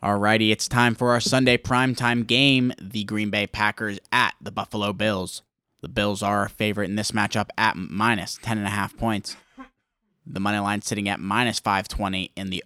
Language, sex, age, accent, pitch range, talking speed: English, male, 20-39, American, 100-120 Hz, 175 wpm